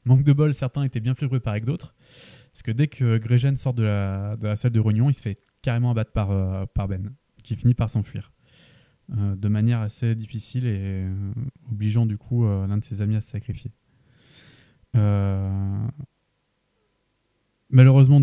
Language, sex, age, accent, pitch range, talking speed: French, male, 20-39, French, 105-130 Hz, 180 wpm